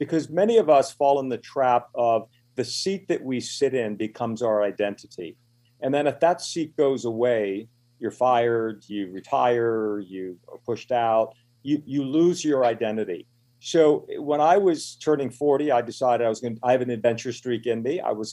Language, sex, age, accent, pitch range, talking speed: English, male, 50-69, American, 110-135 Hz, 185 wpm